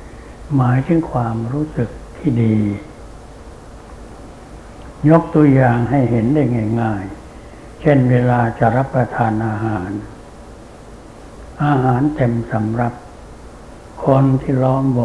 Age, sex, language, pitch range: 60-79, male, Thai, 115-135 Hz